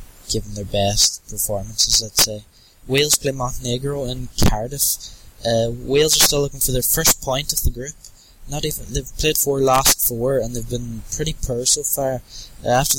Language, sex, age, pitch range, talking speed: English, male, 10-29, 115-140 Hz, 180 wpm